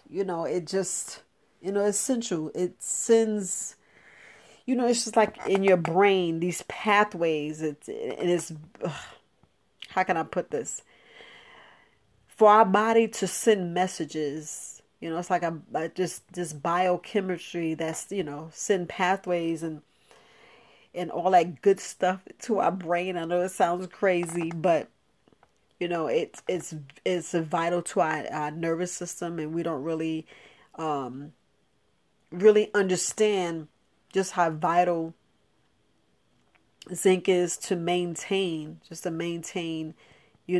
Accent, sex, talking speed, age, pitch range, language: American, female, 135 wpm, 40-59, 165-190 Hz, English